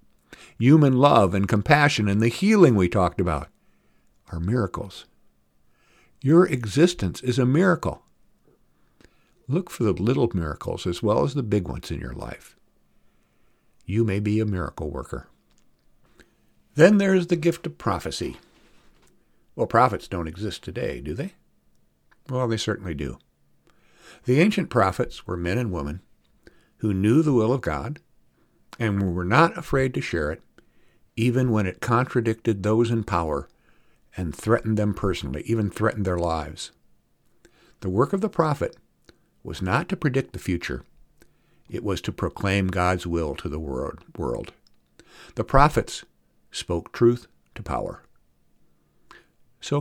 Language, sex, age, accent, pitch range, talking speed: English, male, 60-79, American, 85-125 Hz, 140 wpm